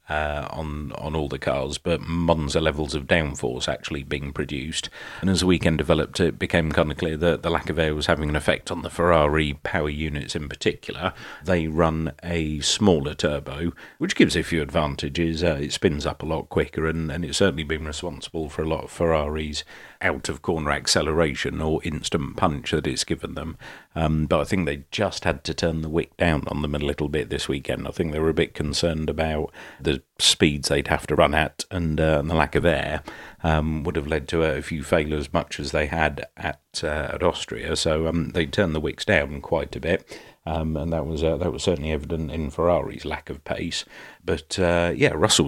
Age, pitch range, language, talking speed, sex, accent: 40-59, 75-85 Hz, English, 215 wpm, male, British